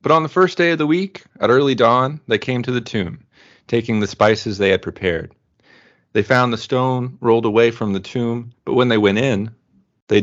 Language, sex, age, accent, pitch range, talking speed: English, male, 30-49, American, 100-120 Hz, 215 wpm